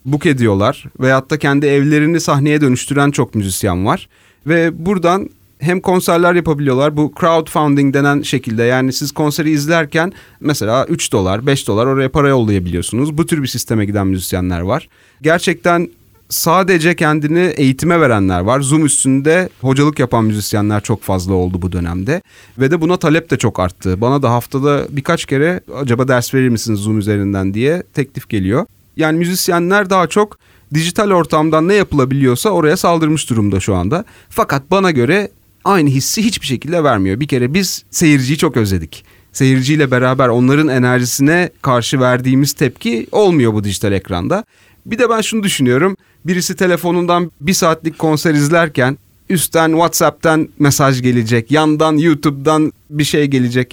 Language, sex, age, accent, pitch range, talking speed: Turkish, male, 30-49, native, 120-165 Hz, 150 wpm